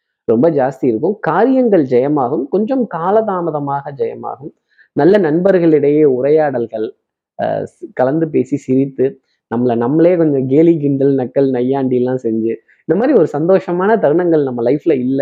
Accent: native